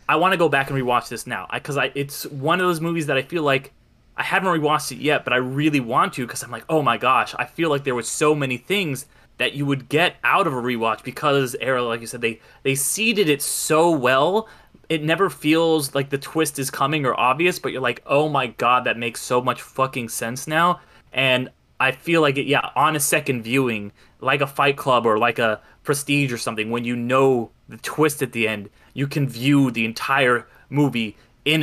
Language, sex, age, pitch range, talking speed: English, male, 20-39, 120-150 Hz, 230 wpm